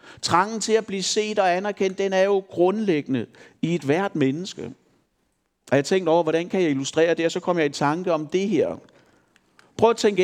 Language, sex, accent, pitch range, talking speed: Danish, male, native, 175-225 Hz, 210 wpm